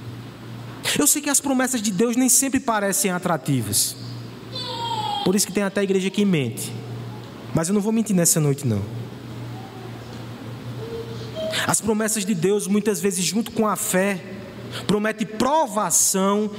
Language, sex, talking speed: Portuguese, male, 140 wpm